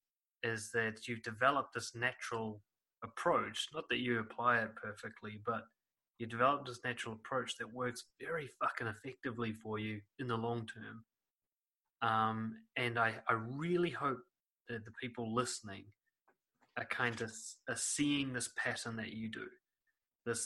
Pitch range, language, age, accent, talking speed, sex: 110-125 Hz, English, 20-39, Australian, 150 wpm, male